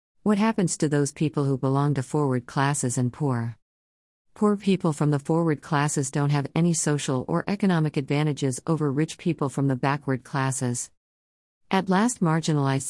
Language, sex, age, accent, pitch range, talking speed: English, female, 50-69, American, 130-175 Hz, 165 wpm